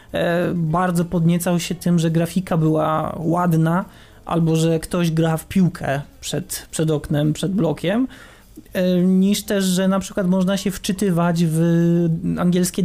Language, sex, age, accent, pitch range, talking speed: Polish, male, 20-39, native, 165-195 Hz, 135 wpm